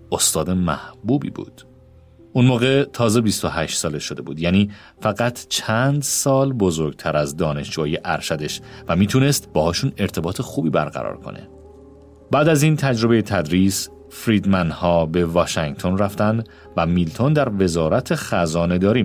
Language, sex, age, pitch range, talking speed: Persian, male, 40-59, 85-130 Hz, 125 wpm